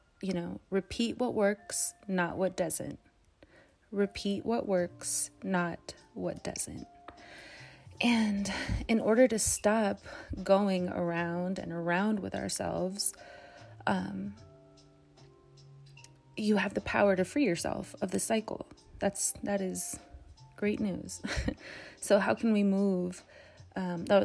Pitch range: 135-215 Hz